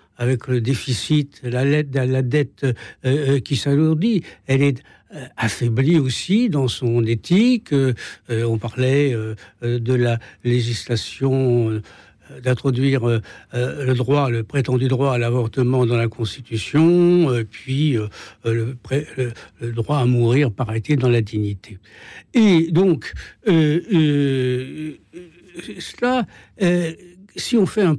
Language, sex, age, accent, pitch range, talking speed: French, male, 60-79, French, 120-155 Hz, 130 wpm